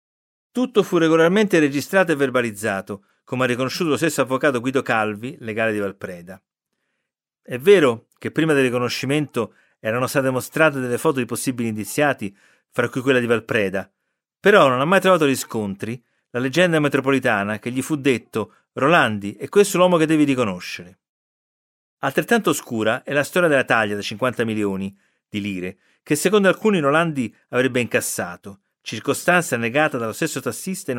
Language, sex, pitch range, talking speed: Italian, male, 115-150 Hz, 155 wpm